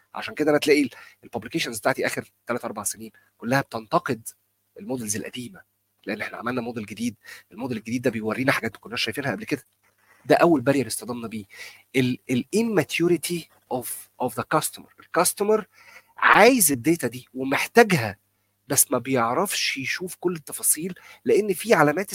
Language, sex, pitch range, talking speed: Arabic, male, 110-170 Hz, 140 wpm